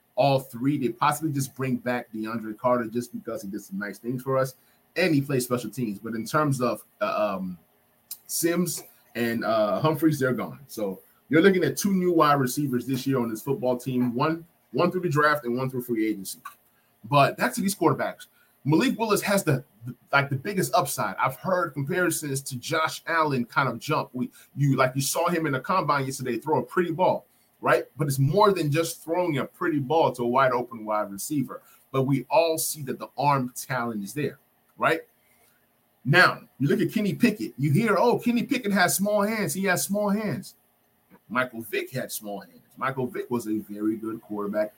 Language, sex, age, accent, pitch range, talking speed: English, male, 20-39, American, 120-165 Hz, 205 wpm